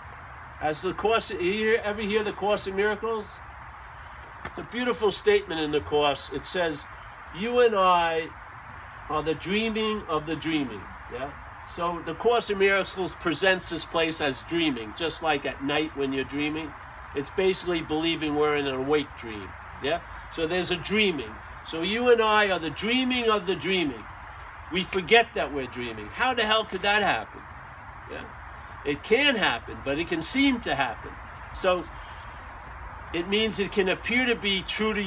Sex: male